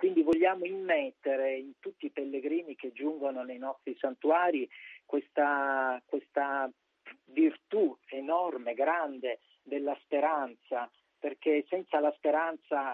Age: 40-59